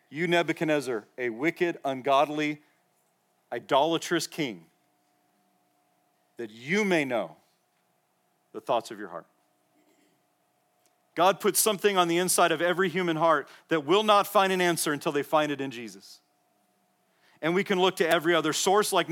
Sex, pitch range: male, 130-180 Hz